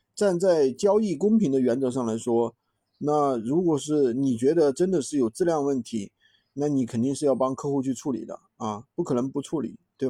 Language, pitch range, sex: Chinese, 125-185 Hz, male